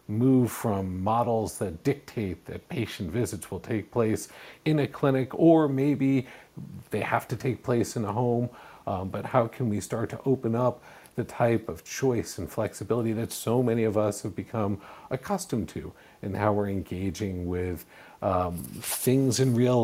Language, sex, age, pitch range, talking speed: English, male, 50-69, 100-125 Hz, 170 wpm